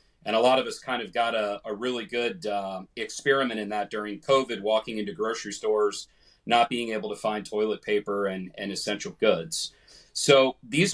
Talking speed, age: 190 wpm, 30-49